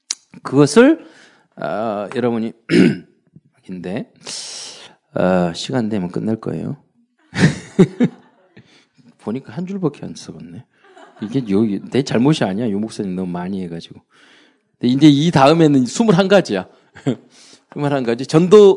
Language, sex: Korean, male